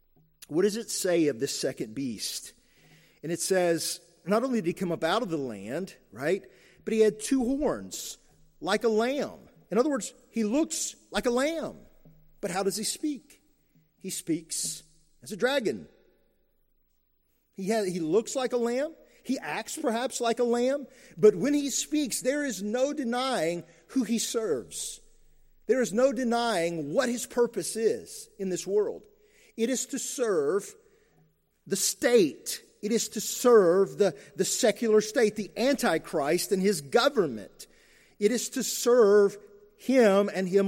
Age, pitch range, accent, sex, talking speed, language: 50-69, 180-260 Hz, American, male, 160 wpm, English